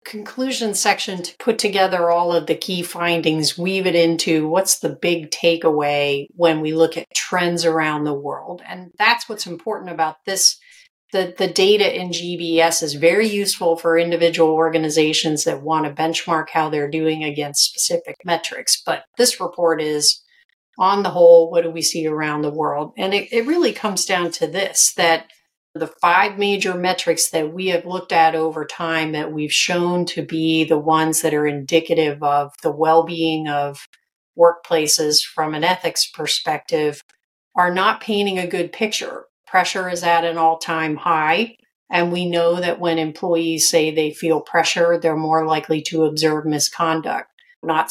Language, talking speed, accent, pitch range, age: English, 170 wpm, American, 160-185 Hz, 40-59